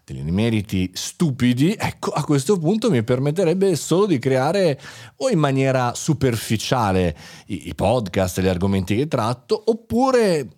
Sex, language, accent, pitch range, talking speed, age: male, Italian, native, 110-160 Hz, 135 wpm, 30-49